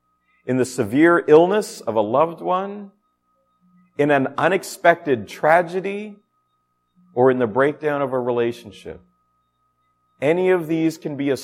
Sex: male